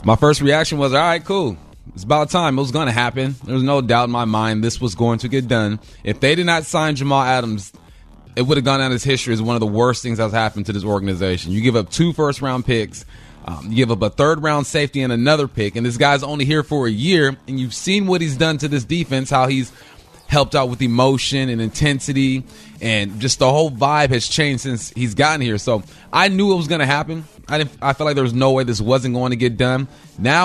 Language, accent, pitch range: English, American, 120-145 Hz